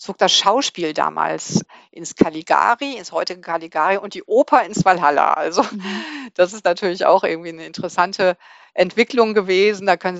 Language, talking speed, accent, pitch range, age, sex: German, 155 wpm, German, 170-210 Hz, 50-69, female